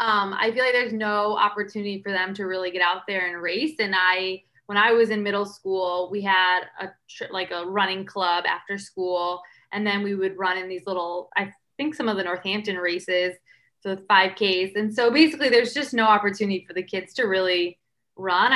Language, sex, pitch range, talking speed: English, female, 185-225 Hz, 205 wpm